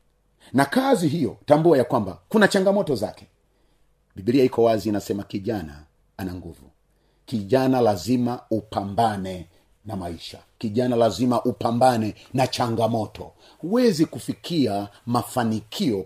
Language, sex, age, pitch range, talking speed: Swahili, male, 40-59, 110-155 Hz, 110 wpm